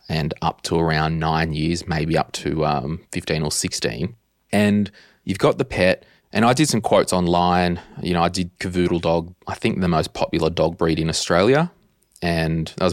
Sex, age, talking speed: male, 20-39, 195 wpm